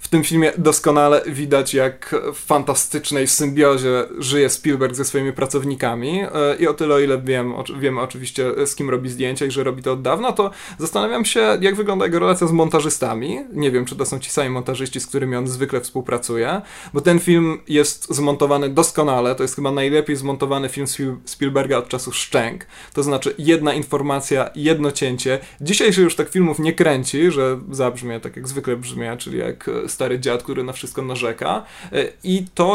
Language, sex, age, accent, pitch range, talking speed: Polish, male, 20-39, native, 130-155 Hz, 185 wpm